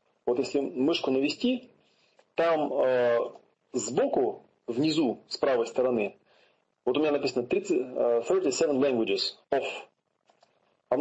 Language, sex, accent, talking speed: Russian, male, native, 105 wpm